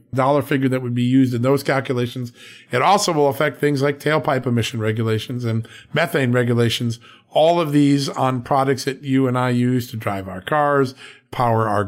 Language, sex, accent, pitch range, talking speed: English, male, American, 115-145 Hz, 185 wpm